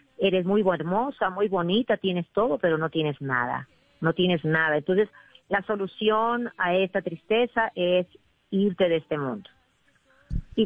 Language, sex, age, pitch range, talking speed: Spanish, female, 40-59, 160-200 Hz, 145 wpm